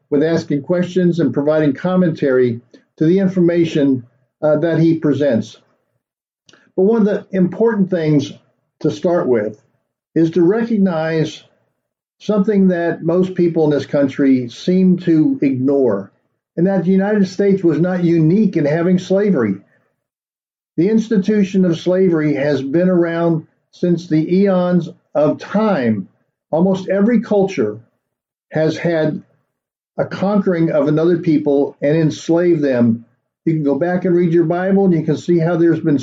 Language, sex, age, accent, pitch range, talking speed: English, male, 50-69, American, 145-180 Hz, 145 wpm